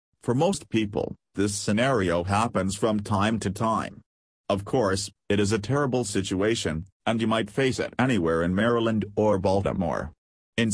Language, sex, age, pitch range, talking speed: English, male, 50-69, 95-115 Hz, 155 wpm